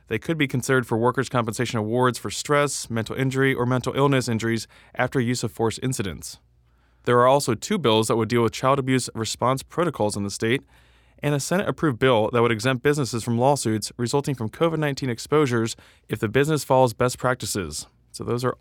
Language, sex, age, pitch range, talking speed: English, male, 20-39, 115-145 Hz, 195 wpm